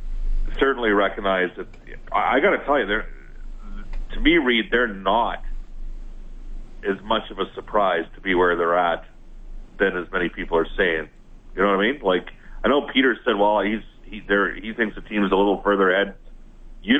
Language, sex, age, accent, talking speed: English, male, 40-59, American, 190 wpm